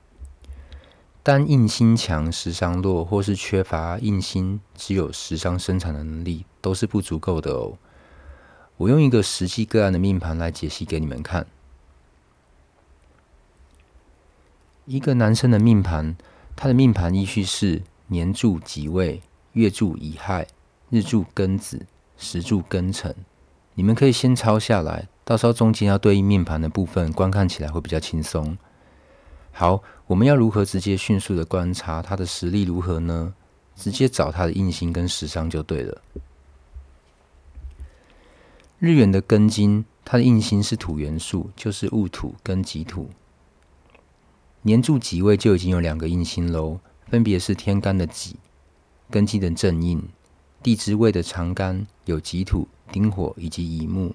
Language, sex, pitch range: Chinese, male, 80-100 Hz